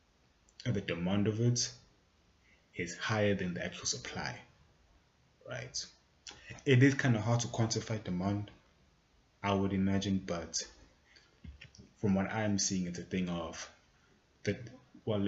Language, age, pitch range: English, 20-39, 80-100 Hz